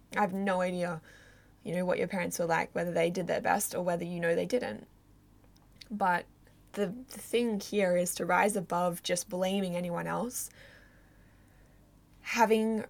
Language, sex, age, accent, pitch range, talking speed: English, female, 10-29, Australian, 175-200 Hz, 165 wpm